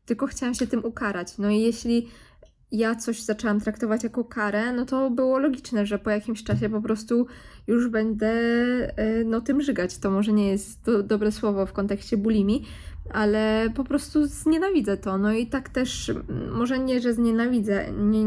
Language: Polish